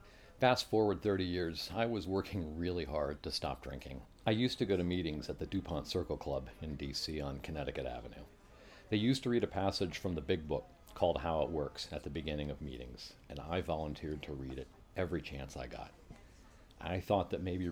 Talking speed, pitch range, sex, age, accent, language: 205 wpm, 75-95 Hz, male, 50-69, American, English